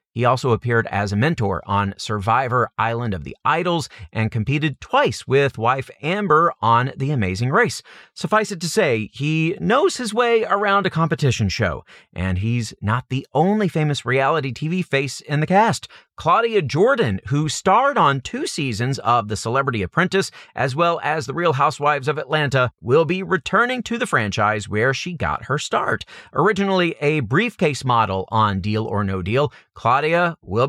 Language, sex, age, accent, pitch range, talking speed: English, male, 40-59, American, 110-160 Hz, 170 wpm